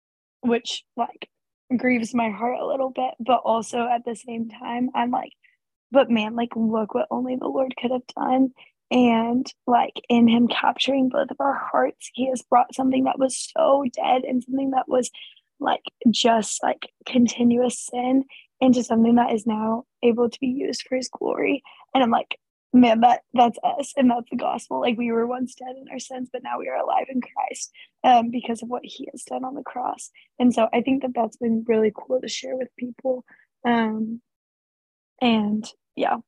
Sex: female